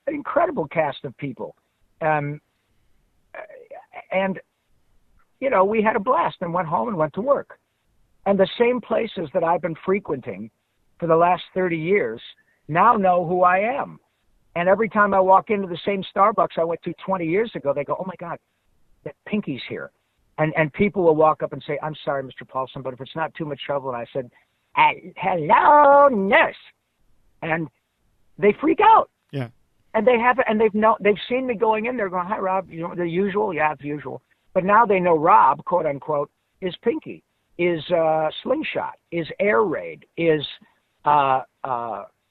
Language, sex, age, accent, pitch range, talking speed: English, male, 50-69, American, 155-205 Hz, 185 wpm